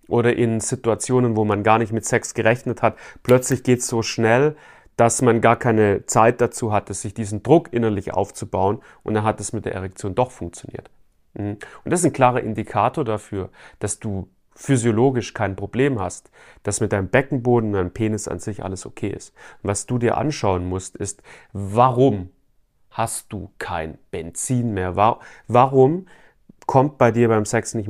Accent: German